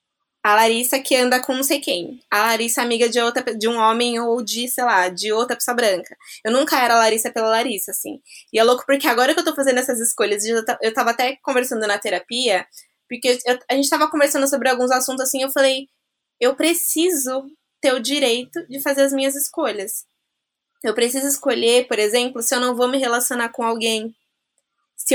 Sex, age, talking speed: female, 20-39, 205 wpm